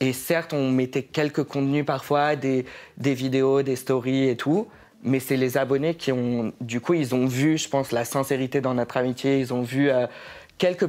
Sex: male